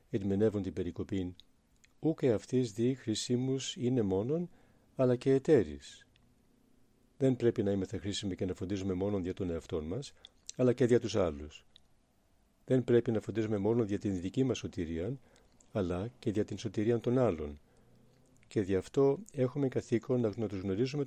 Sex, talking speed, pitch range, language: male, 155 wpm, 95-120 Hz, Greek